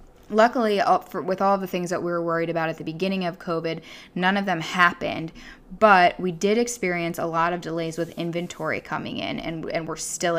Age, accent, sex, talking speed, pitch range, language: 10-29, American, female, 200 wpm, 160-180 Hz, English